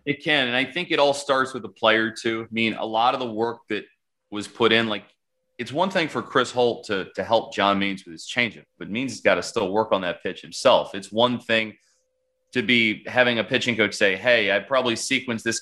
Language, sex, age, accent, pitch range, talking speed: English, male, 30-49, American, 100-125 Hz, 245 wpm